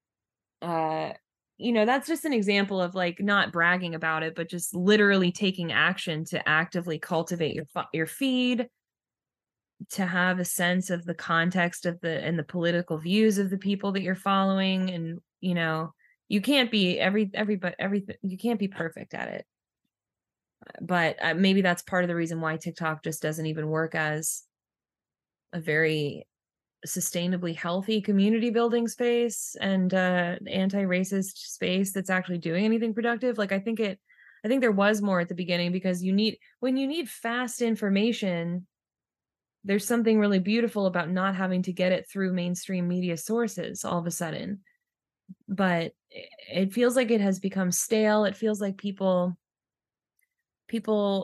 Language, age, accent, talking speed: English, 20-39, American, 165 wpm